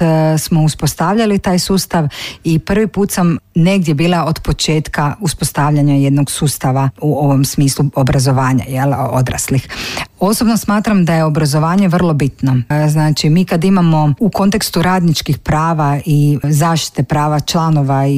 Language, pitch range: Croatian, 145-175 Hz